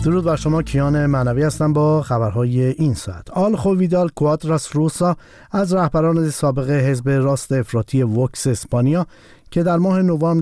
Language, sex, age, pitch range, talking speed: Persian, male, 50-69, 130-160 Hz, 150 wpm